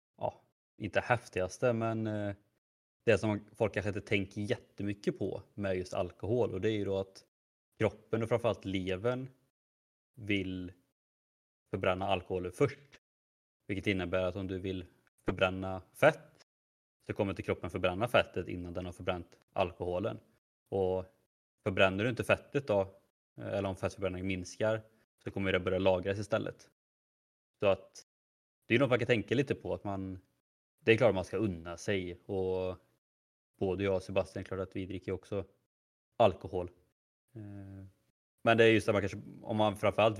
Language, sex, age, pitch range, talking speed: Swedish, male, 20-39, 95-105 Hz, 160 wpm